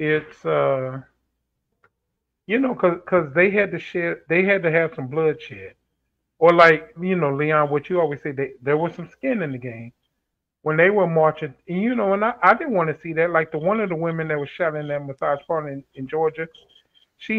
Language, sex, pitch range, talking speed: English, male, 145-180 Hz, 215 wpm